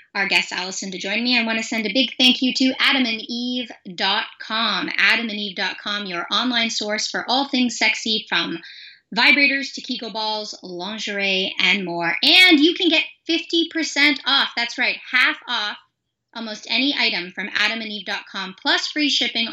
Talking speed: 155 wpm